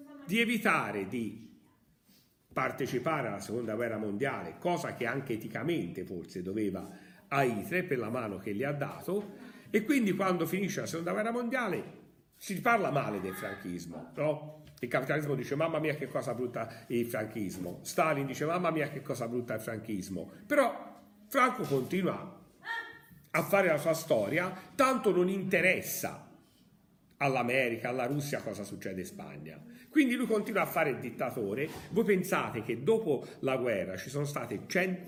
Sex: male